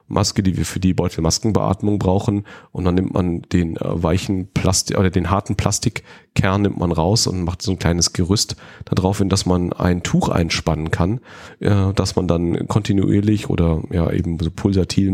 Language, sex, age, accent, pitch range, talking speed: German, male, 30-49, German, 85-105 Hz, 175 wpm